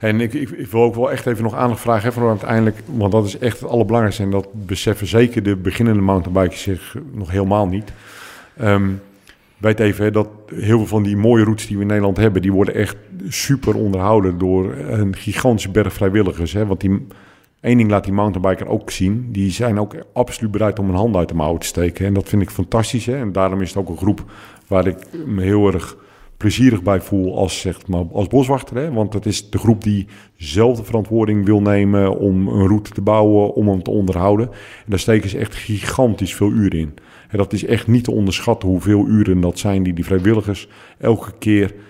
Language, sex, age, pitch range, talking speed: Dutch, male, 50-69, 95-110 Hz, 215 wpm